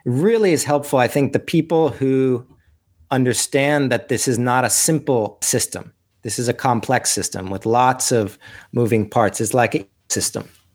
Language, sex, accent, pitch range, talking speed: English, male, American, 115-140 Hz, 165 wpm